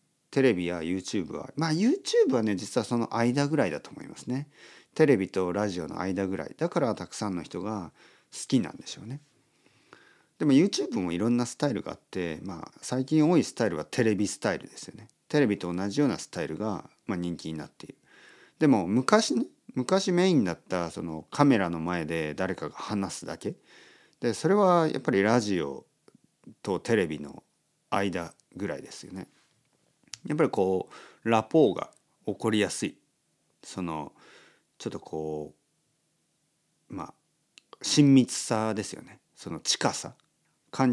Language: Japanese